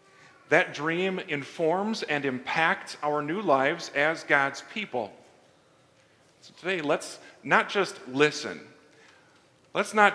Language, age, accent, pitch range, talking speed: English, 40-59, American, 145-190 Hz, 110 wpm